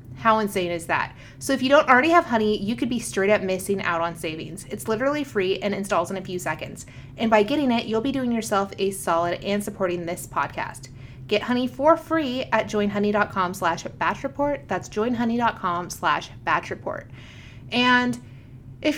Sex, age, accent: female, 30-49, American